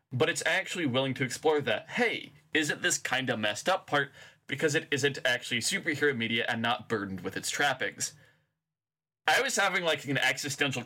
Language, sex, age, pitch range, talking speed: English, male, 20-39, 125-155 Hz, 180 wpm